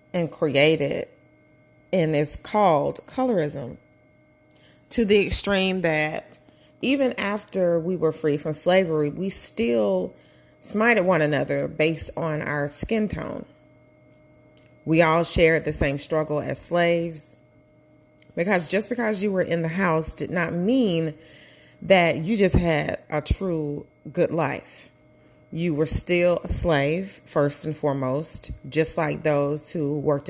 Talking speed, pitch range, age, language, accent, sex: 135 wpm, 145-180 Hz, 30-49, English, American, female